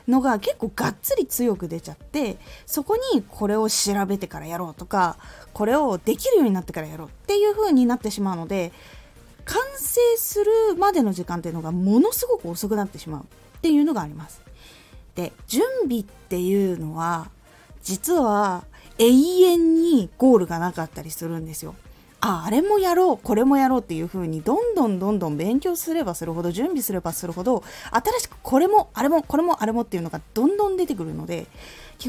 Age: 20-39